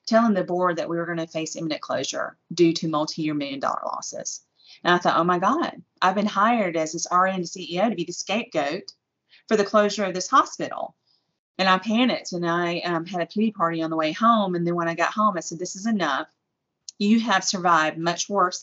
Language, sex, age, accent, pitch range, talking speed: English, female, 30-49, American, 165-200 Hz, 220 wpm